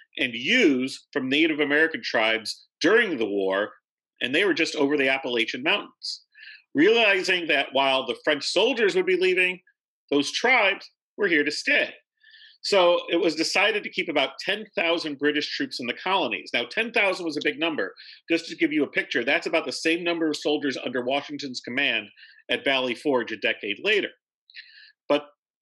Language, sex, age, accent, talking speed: English, male, 40-59, American, 175 wpm